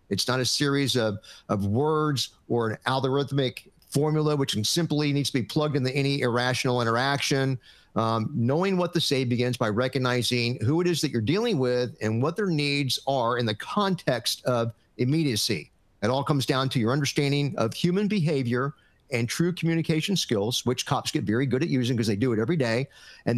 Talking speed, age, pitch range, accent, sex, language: 190 wpm, 50-69, 115-150 Hz, American, male, English